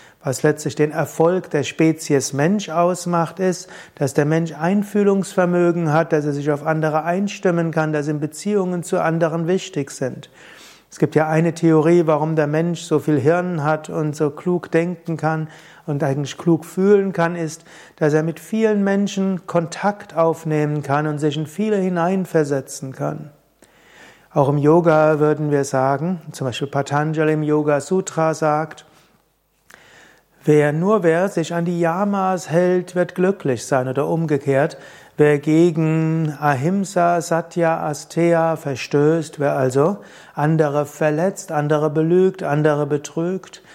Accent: German